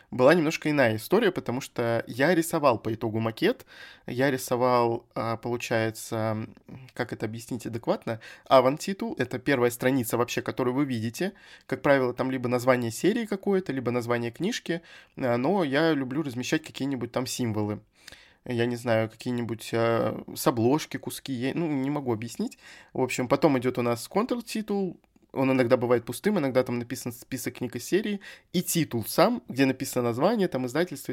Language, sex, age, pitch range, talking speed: Russian, male, 20-39, 120-155 Hz, 155 wpm